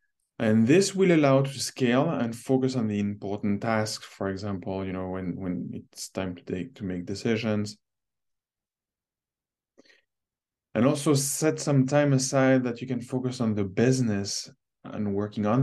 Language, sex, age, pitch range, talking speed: English, male, 20-39, 95-125 Hz, 155 wpm